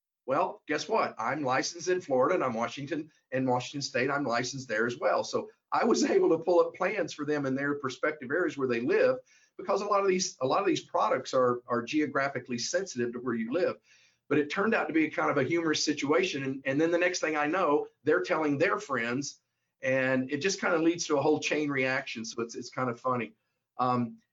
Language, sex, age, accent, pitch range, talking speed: English, male, 50-69, American, 130-190 Hz, 235 wpm